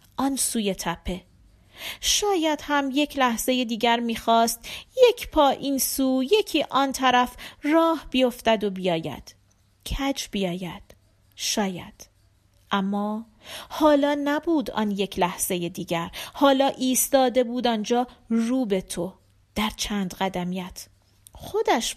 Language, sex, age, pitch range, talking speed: Persian, female, 40-59, 200-275 Hz, 110 wpm